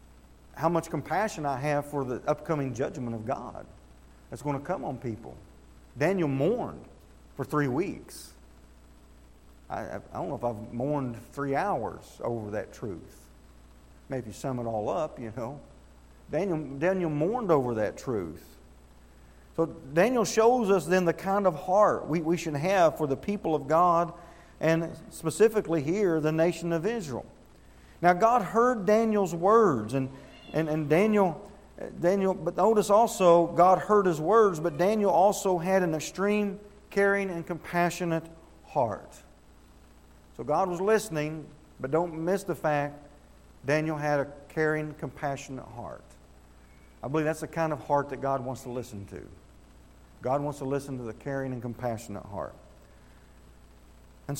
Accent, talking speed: American, 150 wpm